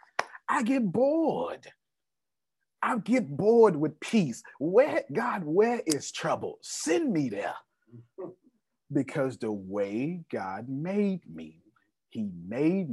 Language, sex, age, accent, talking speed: English, male, 30-49, American, 110 wpm